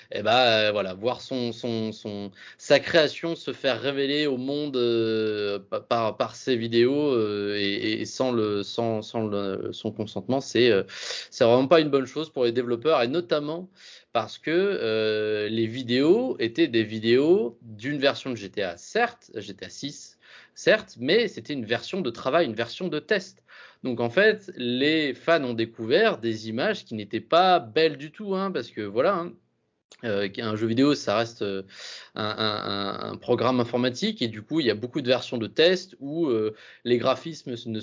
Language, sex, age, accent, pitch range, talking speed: French, male, 20-39, French, 110-140 Hz, 185 wpm